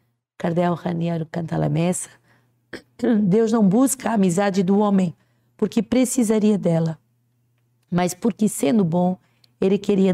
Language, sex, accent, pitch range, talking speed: Portuguese, female, Brazilian, 170-205 Hz, 100 wpm